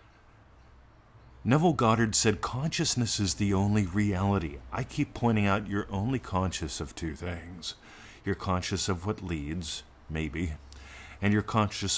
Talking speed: 135 wpm